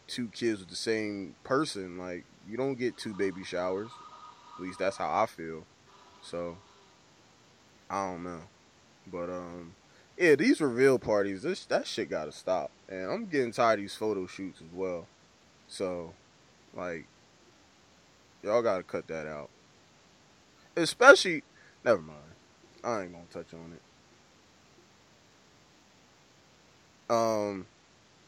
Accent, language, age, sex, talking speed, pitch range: American, English, 20-39, male, 130 wpm, 95-120 Hz